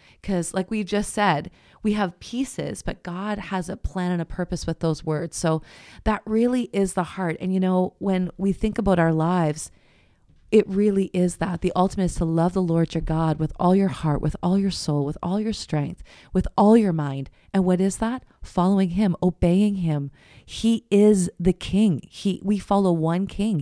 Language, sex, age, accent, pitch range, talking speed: English, female, 30-49, American, 165-200 Hz, 205 wpm